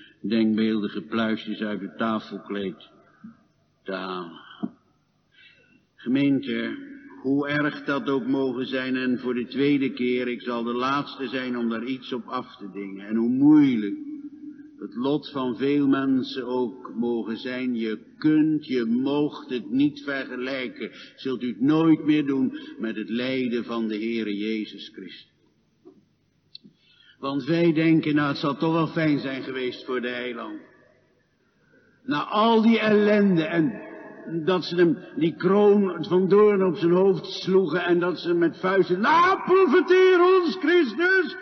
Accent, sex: Dutch, male